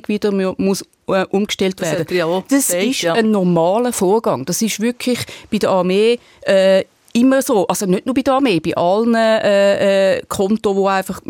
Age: 30-49